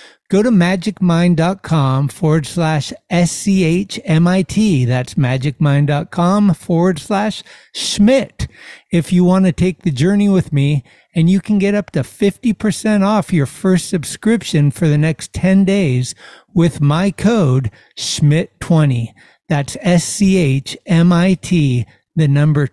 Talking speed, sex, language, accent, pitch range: 115 wpm, male, English, American, 150-190 Hz